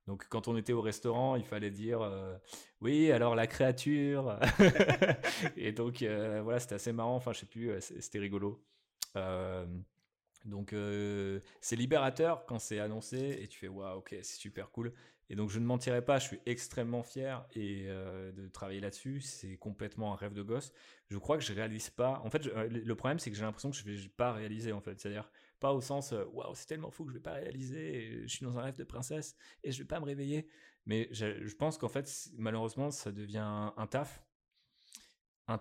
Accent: French